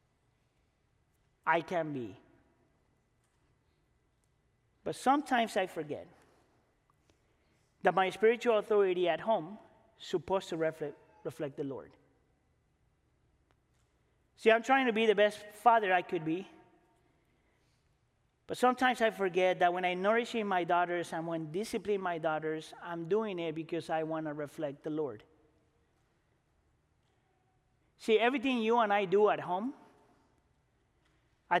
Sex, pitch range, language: male, 165-220 Hz, English